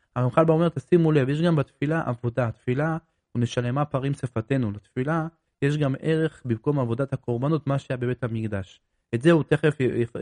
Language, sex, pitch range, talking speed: Hebrew, male, 120-145 Hz, 170 wpm